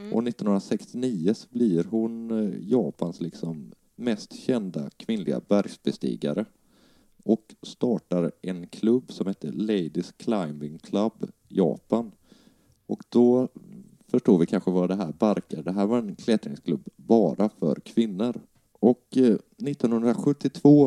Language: Swedish